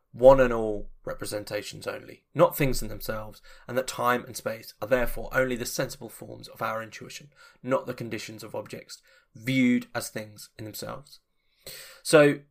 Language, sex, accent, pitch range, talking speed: English, male, British, 110-130 Hz, 165 wpm